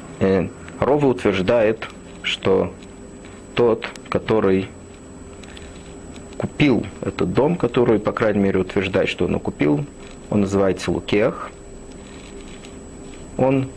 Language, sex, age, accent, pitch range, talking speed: Russian, male, 40-59, native, 95-130 Hz, 85 wpm